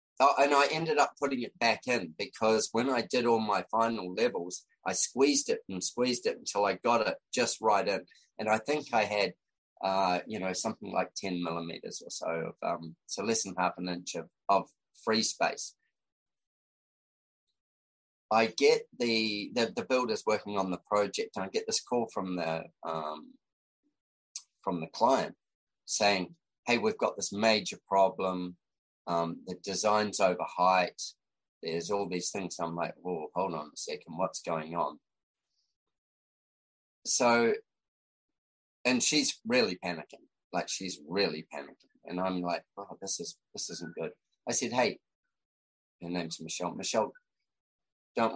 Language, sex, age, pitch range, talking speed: English, male, 30-49, 90-115 Hz, 160 wpm